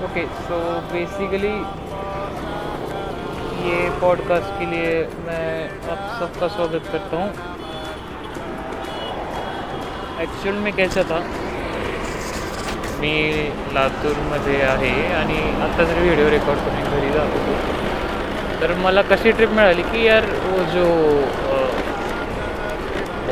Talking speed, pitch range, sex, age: 85 wpm, 150-185 Hz, male, 20-39